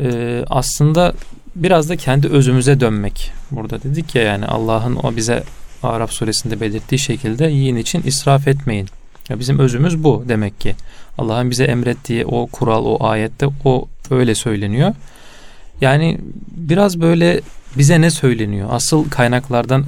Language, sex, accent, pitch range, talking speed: Turkish, male, native, 115-145 Hz, 140 wpm